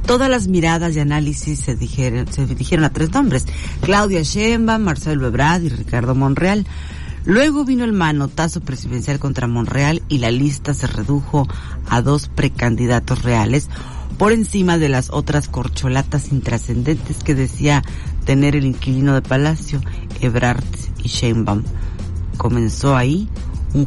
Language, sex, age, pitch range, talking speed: Spanish, female, 40-59, 110-145 Hz, 135 wpm